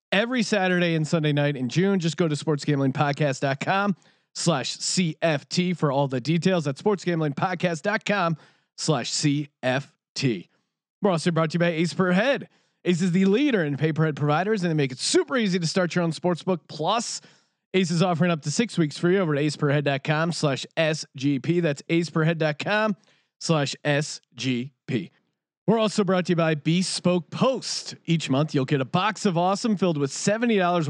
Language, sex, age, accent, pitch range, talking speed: English, male, 30-49, American, 150-190 Hz, 175 wpm